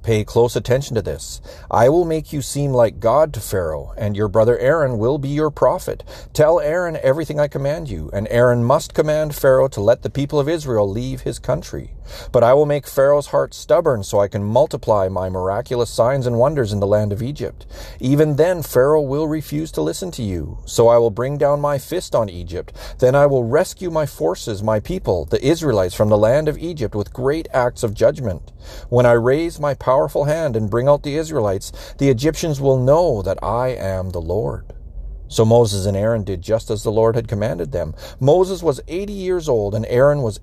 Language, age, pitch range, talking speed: English, 40-59, 105-145 Hz, 210 wpm